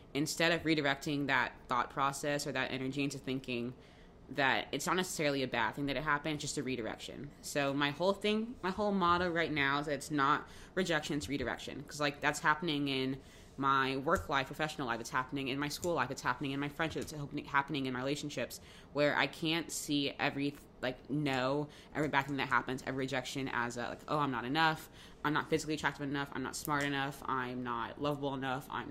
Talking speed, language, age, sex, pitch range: 210 wpm, English, 20-39, female, 130-150 Hz